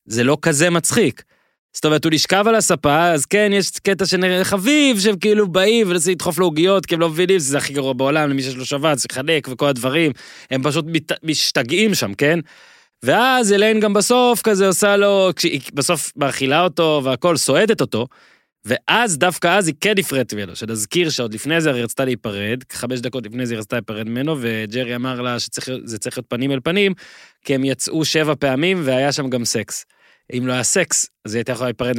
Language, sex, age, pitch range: Hebrew, male, 20-39, 125-170 Hz